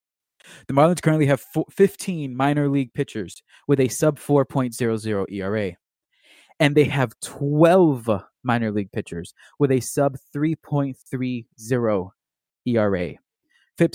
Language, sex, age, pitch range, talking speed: English, male, 20-39, 120-145 Hz, 110 wpm